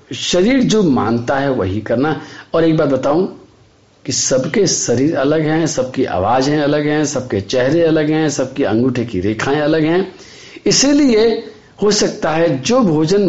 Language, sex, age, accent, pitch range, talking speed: Hindi, male, 50-69, native, 120-195 Hz, 160 wpm